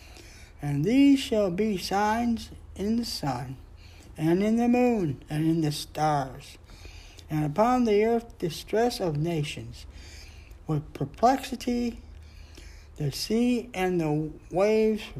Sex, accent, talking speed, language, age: male, American, 120 wpm, English, 60-79